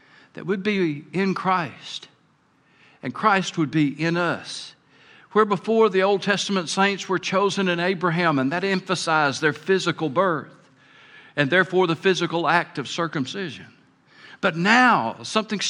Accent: American